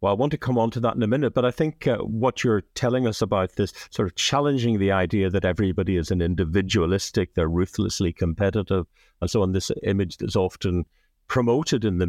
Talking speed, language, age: 220 wpm, English, 50-69